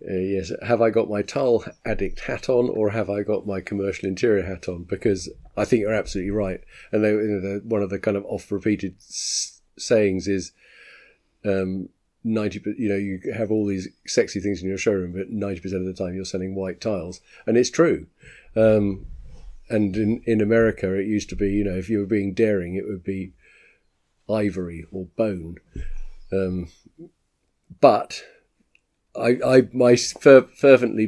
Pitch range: 95-105 Hz